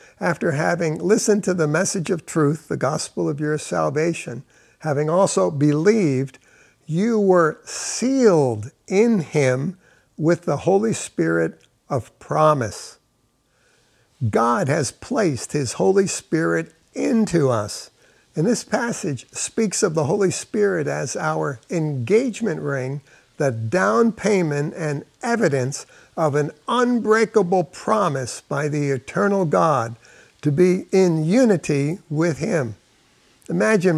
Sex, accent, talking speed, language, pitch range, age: male, American, 120 wpm, English, 145-205 Hz, 50-69